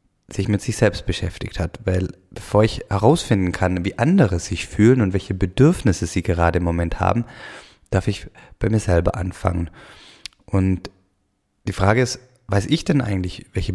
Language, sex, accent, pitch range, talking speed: German, male, German, 90-115 Hz, 165 wpm